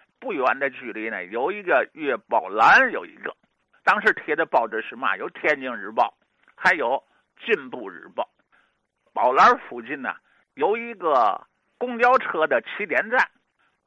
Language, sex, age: Chinese, male, 50-69